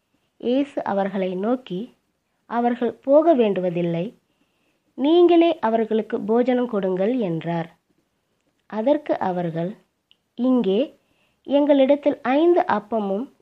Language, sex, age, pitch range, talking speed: Tamil, female, 20-39, 190-285 Hz, 70 wpm